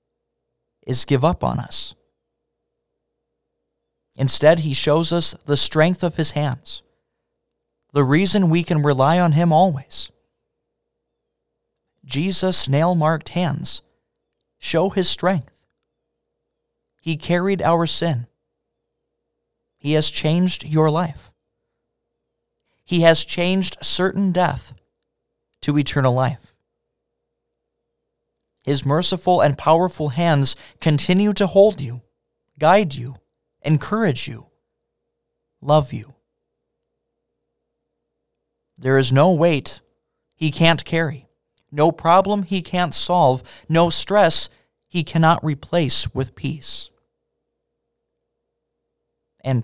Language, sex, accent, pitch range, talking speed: English, male, American, 135-175 Hz, 95 wpm